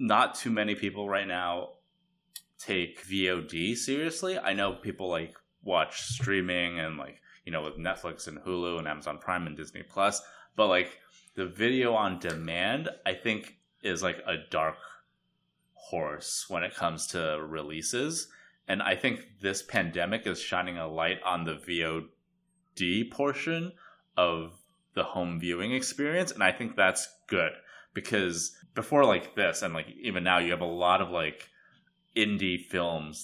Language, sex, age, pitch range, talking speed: English, male, 20-39, 85-130 Hz, 155 wpm